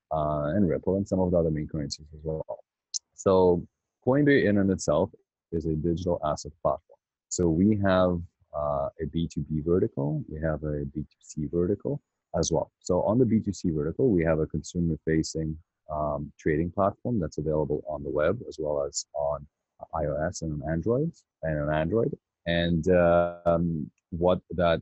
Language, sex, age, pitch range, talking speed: English, male, 30-49, 80-95 Hz, 185 wpm